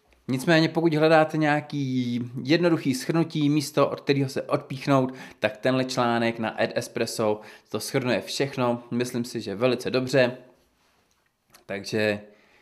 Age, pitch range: 20-39, 115-140 Hz